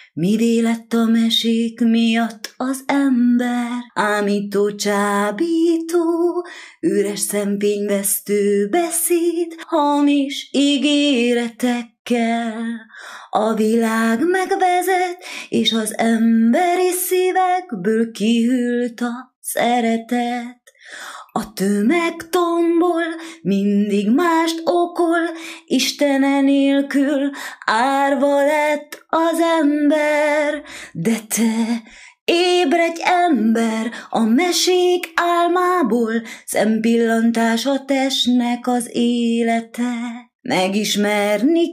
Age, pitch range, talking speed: 20-39, 230-330 Hz, 70 wpm